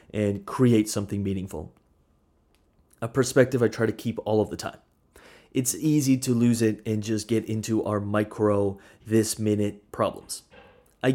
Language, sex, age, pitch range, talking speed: English, male, 30-49, 105-130 Hz, 155 wpm